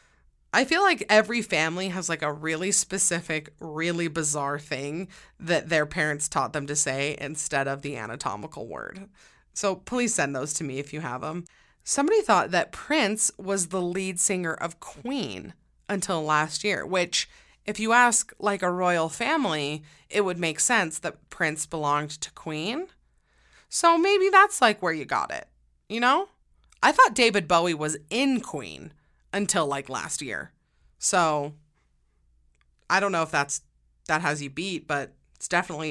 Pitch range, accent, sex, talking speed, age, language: 150-210 Hz, American, female, 165 wpm, 20-39, English